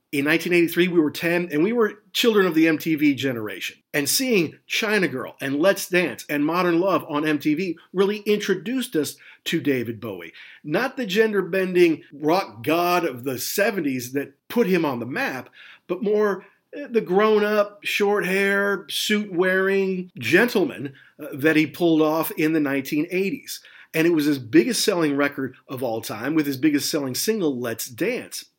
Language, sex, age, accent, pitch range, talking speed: English, male, 50-69, American, 140-190 Hz, 155 wpm